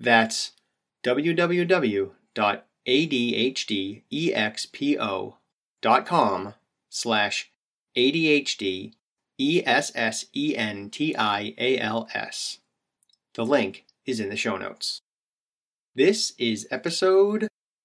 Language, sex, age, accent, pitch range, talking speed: English, male, 30-49, American, 115-185 Hz, 45 wpm